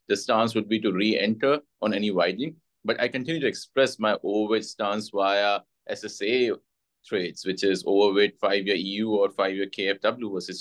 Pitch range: 95-120 Hz